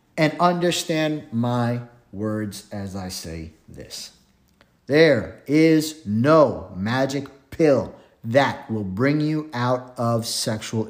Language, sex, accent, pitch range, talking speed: English, male, American, 110-155 Hz, 110 wpm